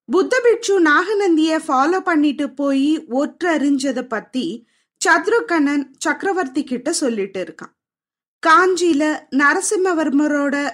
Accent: native